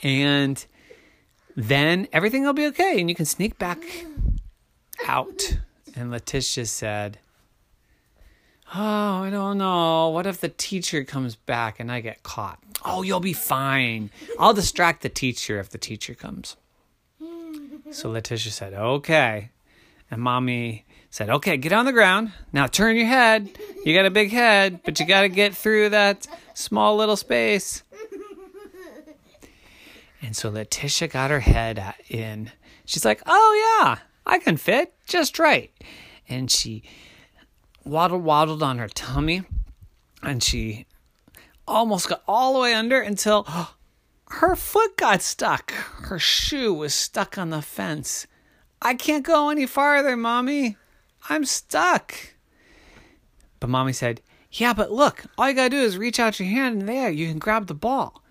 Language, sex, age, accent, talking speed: English, male, 30-49, American, 150 wpm